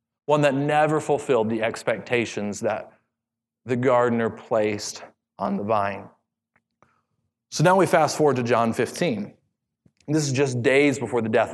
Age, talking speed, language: 30-49, 145 wpm, English